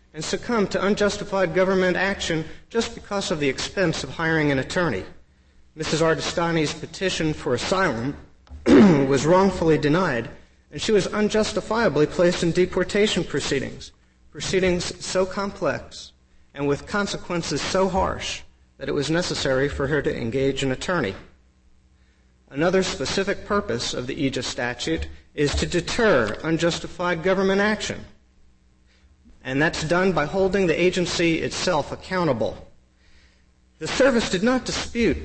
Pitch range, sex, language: 130-185 Hz, male, English